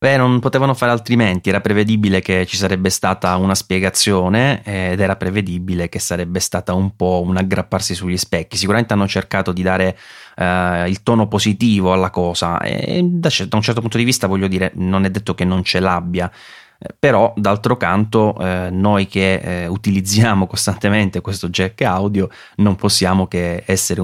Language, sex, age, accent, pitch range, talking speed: Italian, male, 20-39, native, 90-105 Hz, 160 wpm